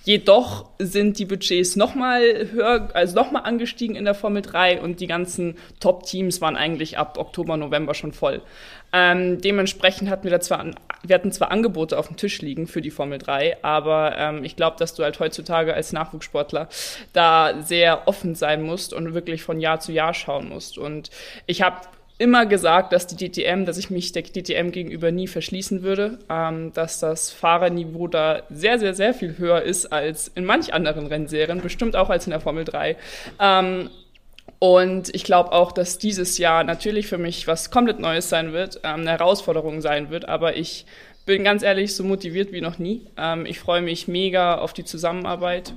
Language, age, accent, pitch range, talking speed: German, 20-39, German, 160-190 Hz, 190 wpm